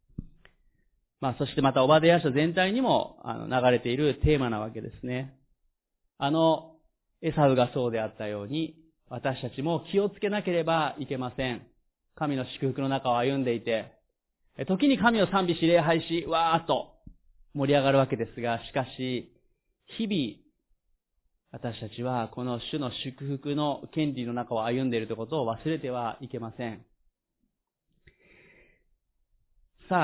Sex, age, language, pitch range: male, 30-49, Japanese, 130-175 Hz